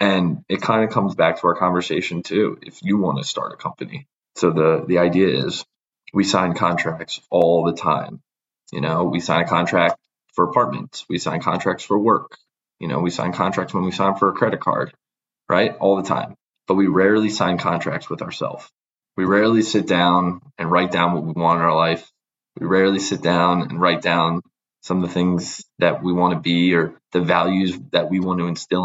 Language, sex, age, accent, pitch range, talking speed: English, male, 20-39, American, 85-100 Hz, 210 wpm